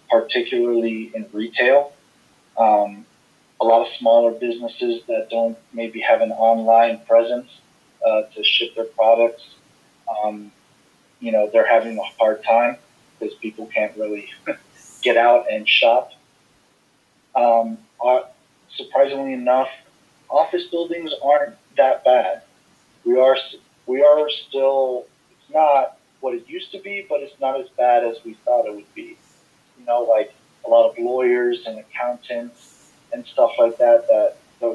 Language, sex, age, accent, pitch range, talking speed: English, male, 30-49, American, 115-185 Hz, 145 wpm